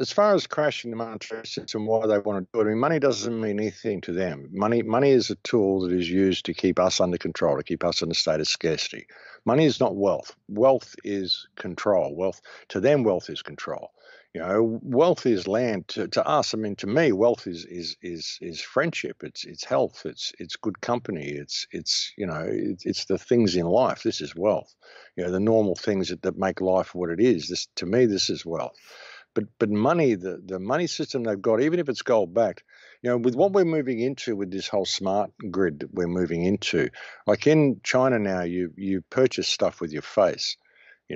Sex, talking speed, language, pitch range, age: male, 225 wpm, English, 90-115 Hz, 60-79